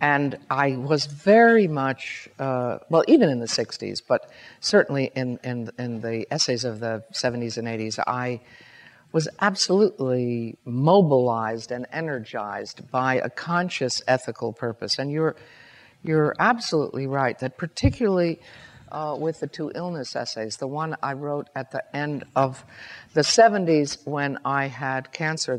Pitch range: 125-150 Hz